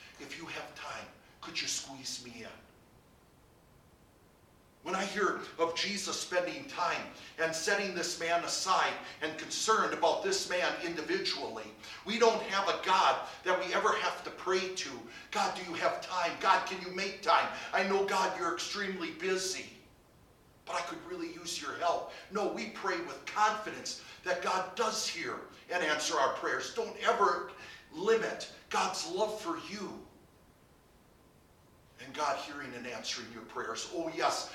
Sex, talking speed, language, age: male, 155 wpm, English, 50-69